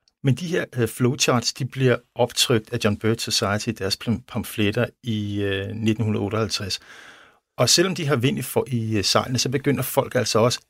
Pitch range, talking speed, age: 110-130 Hz, 155 wpm, 50-69